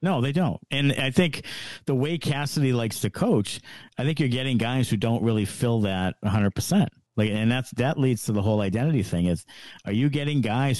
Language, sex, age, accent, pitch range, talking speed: English, male, 50-69, American, 115-155 Hz, 200 wpm